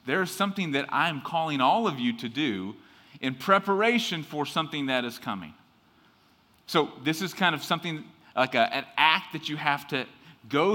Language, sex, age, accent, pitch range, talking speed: English, male, 30-49, American, 140-200 Hz, 185 wpm